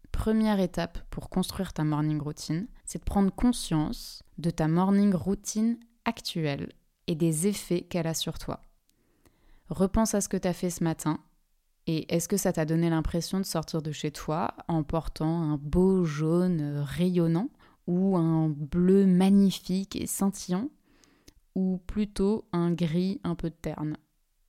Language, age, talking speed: French, 20-39, 155 wpm